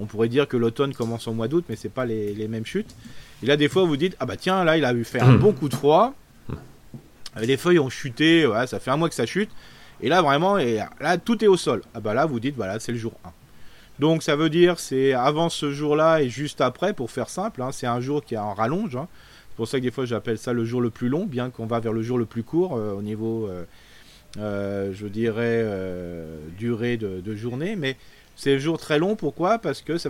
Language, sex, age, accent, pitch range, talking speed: French, male, 30-49, French, 115-145 Hz, 270 wpm